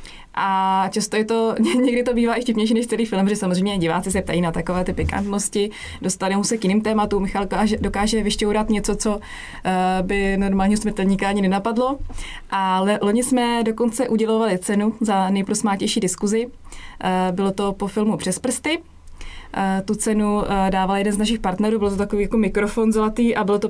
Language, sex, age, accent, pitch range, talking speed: English, female, 20-39, Czech, 195-230 Hz, 165 wpm